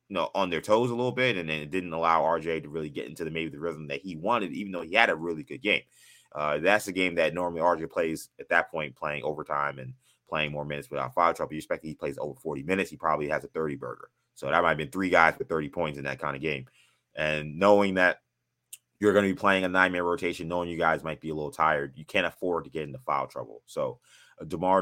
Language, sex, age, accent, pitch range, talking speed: English, male, 20-39, American, 75-95 Hz, 265 wpm